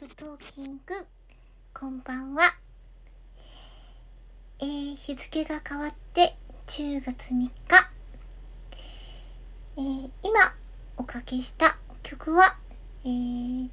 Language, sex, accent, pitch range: Japanese, male, native, 235-300 Hz